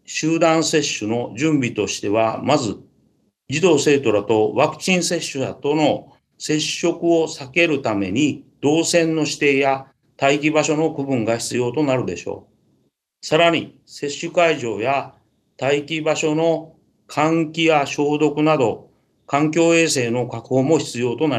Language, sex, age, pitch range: Japanese, male, 40-59, 125-155 Hz